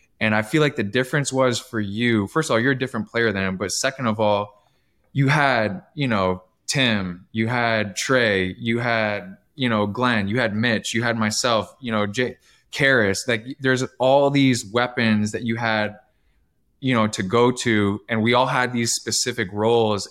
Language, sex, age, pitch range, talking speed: English, male, 20-39, 110-125 Hz, 190 wpm